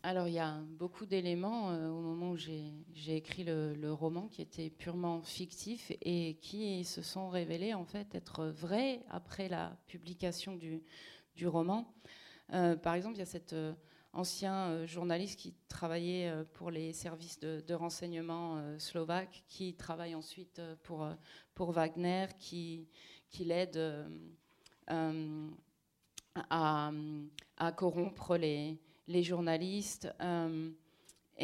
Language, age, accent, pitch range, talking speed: French, 30-49, French, 160-185 Hz, 135 wpm